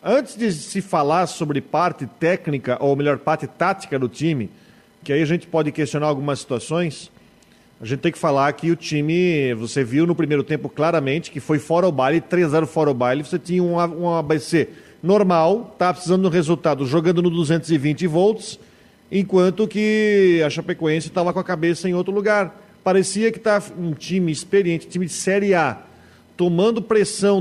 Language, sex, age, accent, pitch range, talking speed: Portuguese, male, 40-59, Brazilian, 155-195 Hz, 175 wpm